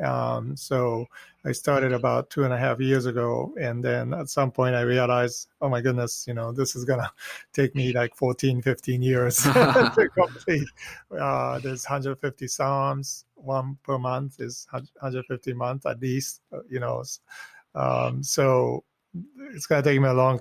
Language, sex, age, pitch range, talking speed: English, male, 30-49, 125-140 Hz, 165 wpm